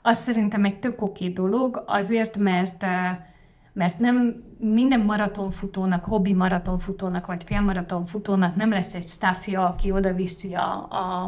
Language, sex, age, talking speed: Hungarian, female, 30-49, 135 wpm